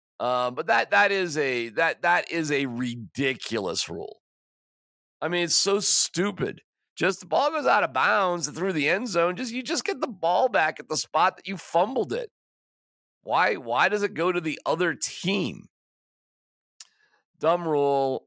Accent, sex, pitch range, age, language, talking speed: American, male, 145-205 Hz, 40-59, English, 175 wpm